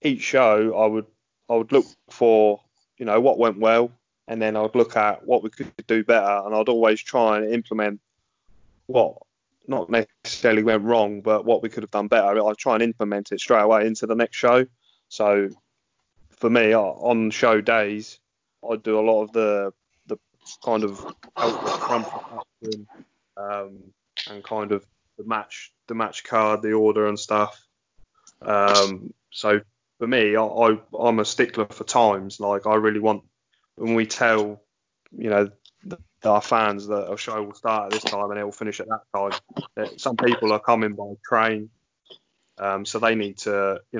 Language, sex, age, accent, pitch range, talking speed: English, male, 20-39, British, 100-110 Hz, 180 wpm